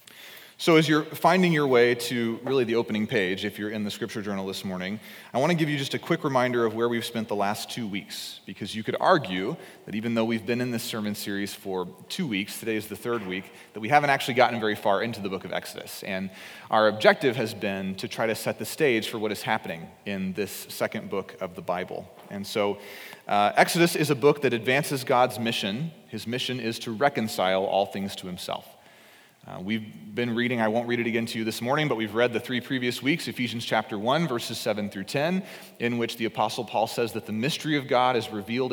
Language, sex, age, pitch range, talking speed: English, male, 30-49, 105-130 Hz, 235 wpm